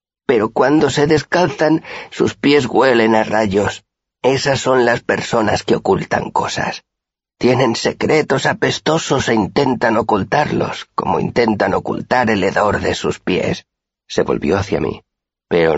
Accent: Spanish